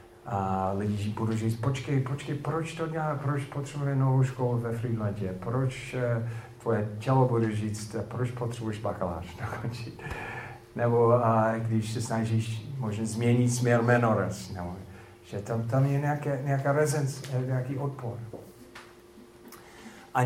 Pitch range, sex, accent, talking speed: 95-120 Hz, male, native, 135 wpm